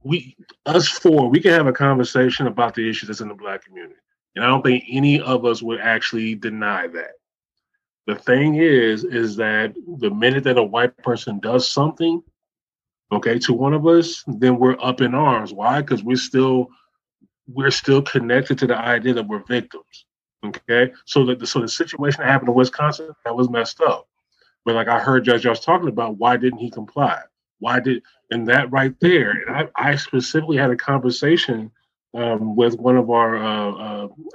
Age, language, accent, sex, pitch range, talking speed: 20-39, English, American, male, 120-140 Hz, 190 wpm